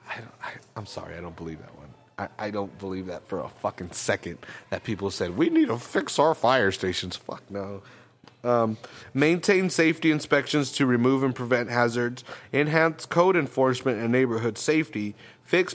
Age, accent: 30-49, American